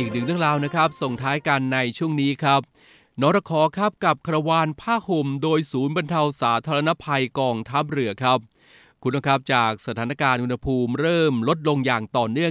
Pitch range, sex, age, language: 120-150 Hz, male, 20-39, Thai